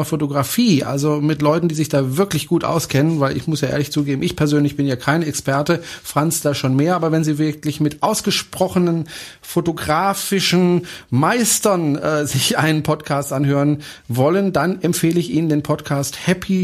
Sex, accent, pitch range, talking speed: male, German, 140-170 Hz, 170 wpm